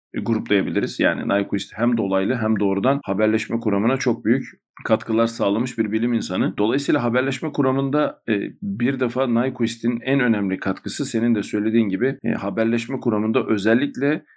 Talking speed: 135 wpm